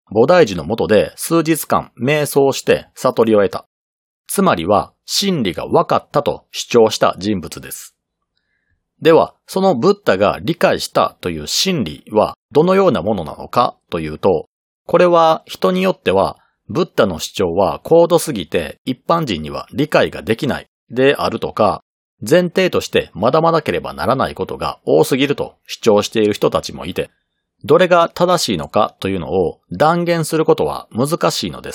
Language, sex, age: Japanese, male, 40-59